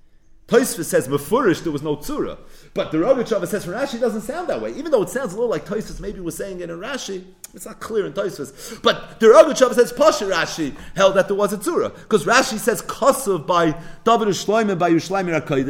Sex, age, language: male, 40-59, English